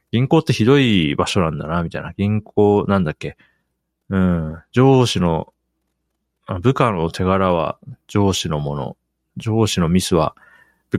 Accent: native